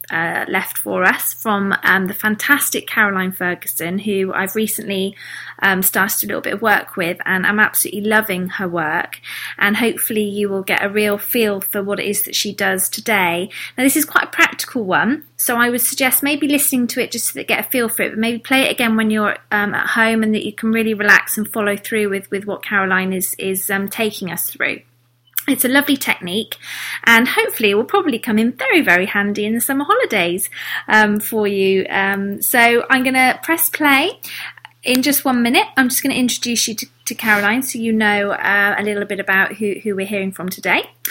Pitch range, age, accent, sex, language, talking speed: 200-245 Hz, 20-39, British, female, English, 220 wpm